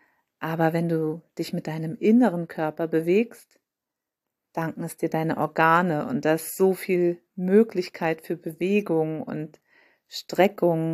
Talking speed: 125 wpm